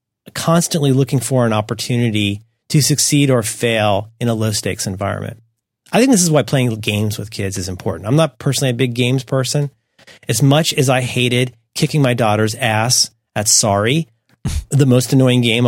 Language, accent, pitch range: English, American, 115-150 Hz